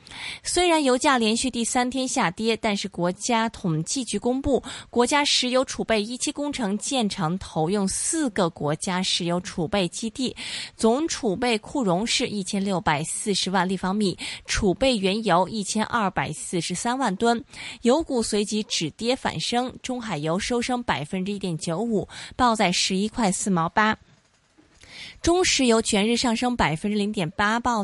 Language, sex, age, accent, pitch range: Chinese, female, 20-39, native, 180-245 Hz